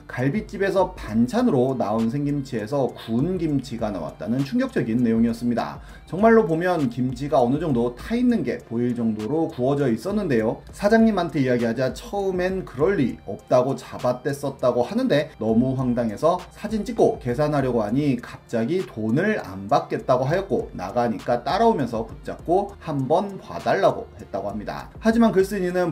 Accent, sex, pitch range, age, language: native, male, 120-190 Hz, 30-49, Korean